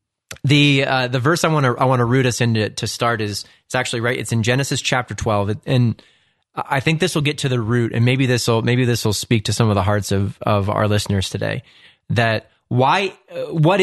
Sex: male